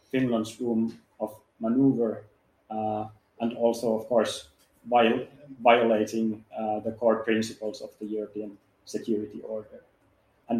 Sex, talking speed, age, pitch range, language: male, 120 wpm, 30-49, 110-120 Hz, Danish